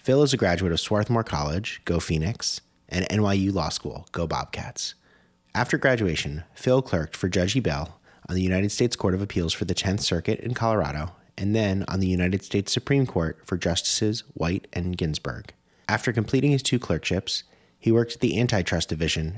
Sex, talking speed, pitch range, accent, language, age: male, 185 wpm, 85-110 Hz, American, English, 30-49